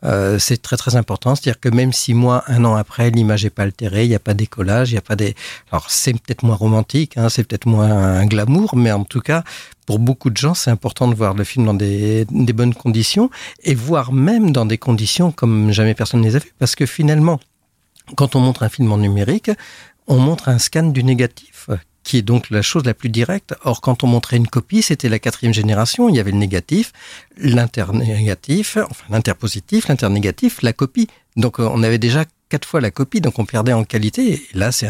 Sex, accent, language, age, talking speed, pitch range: male, French, French, 50-69, 225 wpm, 110-130 Hz